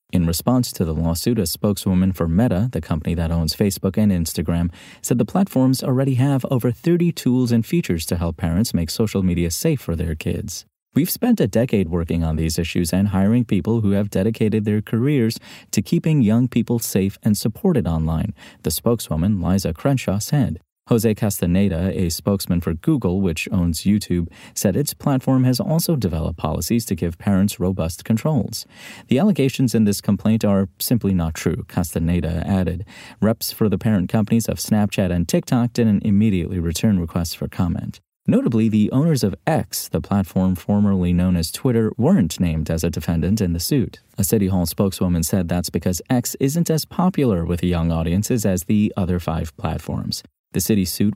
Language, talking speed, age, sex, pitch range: English, 180 wpm, 30-49, male, 90-115 Hz